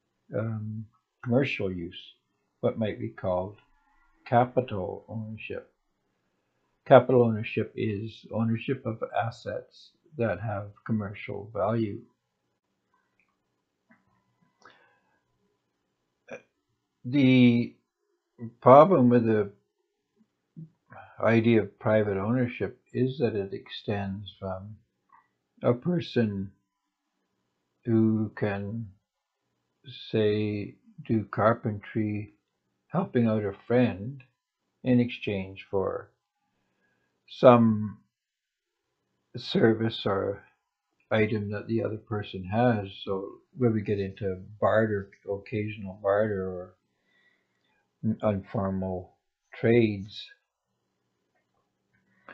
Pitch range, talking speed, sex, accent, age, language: 100-120 Hz, 75 wpm, male, American, 60-79, English